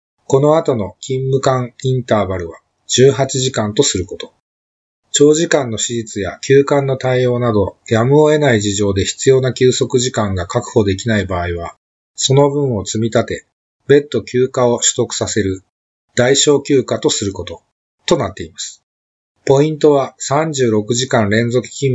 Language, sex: Japanese, male